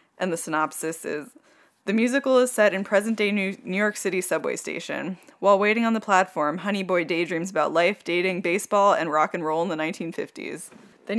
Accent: American